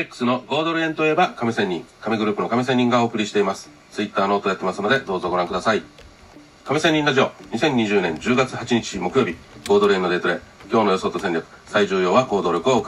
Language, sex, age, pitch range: Japanese, male, 40-59, 100-130 Hz